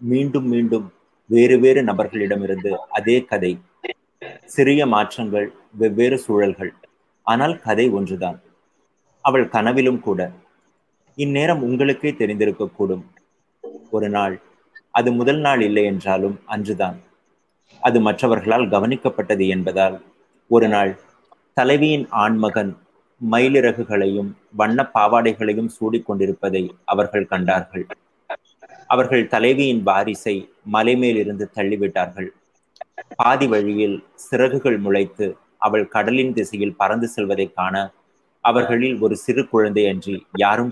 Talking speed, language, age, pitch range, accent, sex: 95 wpm, Tamil, 30-49, 100-120 Hz, native, male